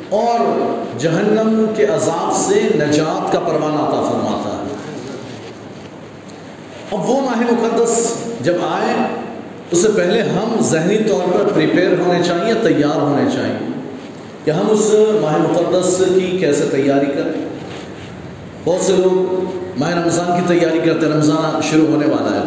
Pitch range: 155-215 Hz